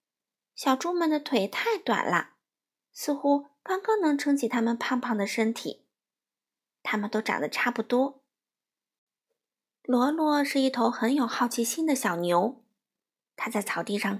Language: Chinese